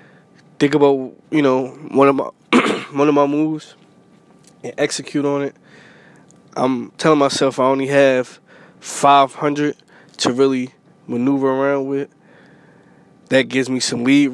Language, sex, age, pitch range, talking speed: English, male, 20-39, 125-140 Hz, 140 wpm